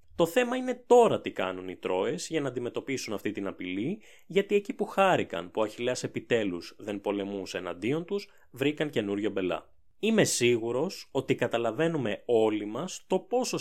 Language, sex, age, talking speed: Greek, male, 20-39, 165 wpm